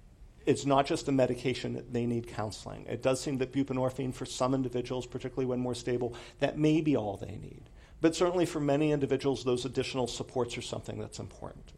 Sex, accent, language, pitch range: male, American, English, 120-150 Hz